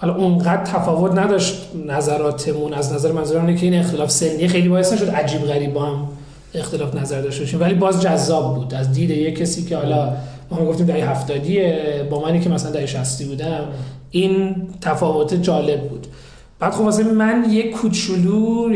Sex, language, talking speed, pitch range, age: male, Persian, 170 wpm, 150-190 Hz, 40-59